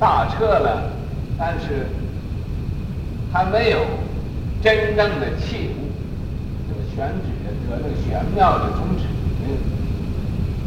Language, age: Chinese, 60-79